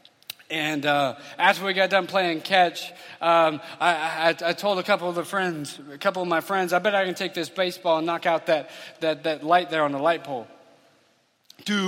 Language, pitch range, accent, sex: English, 165-190 Hz, American, male